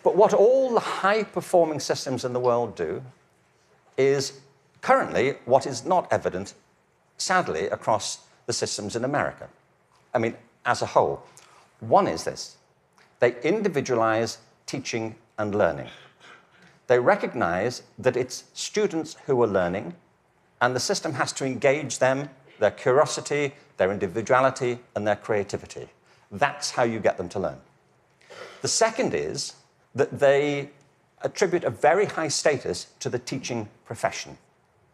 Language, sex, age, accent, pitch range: Korean, male, 50-69, British, 115-145 Hz